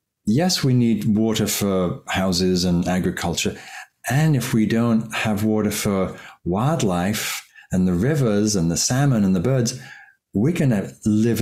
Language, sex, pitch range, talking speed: English, male, 90-115 Hz, 145 wpm